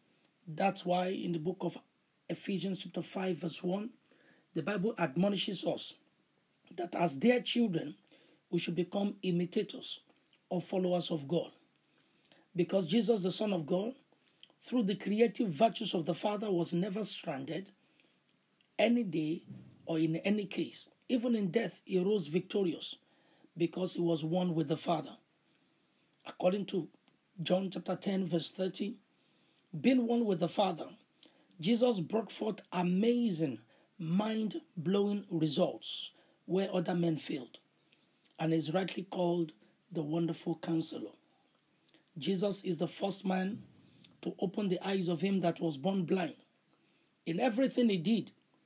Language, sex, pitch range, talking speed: English, male, 170-205 Hz, 135 wpm